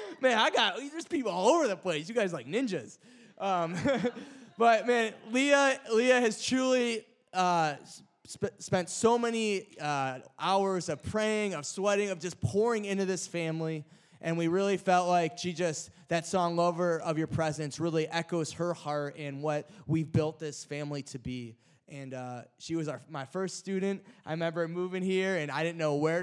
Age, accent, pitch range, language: 20-39, American, 130-180 Hz, English